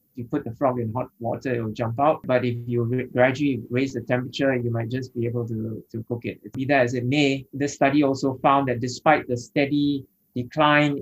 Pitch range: 120-145 Hz